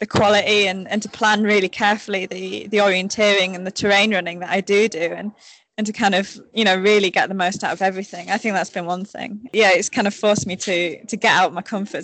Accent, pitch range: British, 195-230 Hz